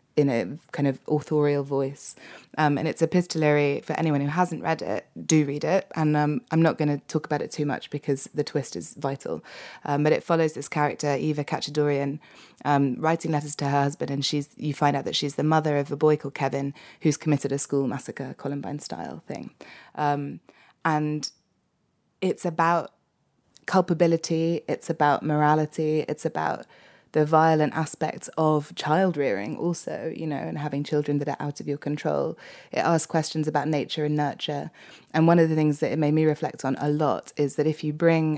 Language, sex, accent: English, female, British